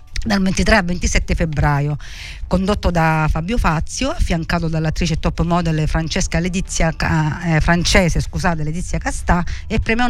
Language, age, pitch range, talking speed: Italian, 50-69, 155-195 Hz, 130 wpm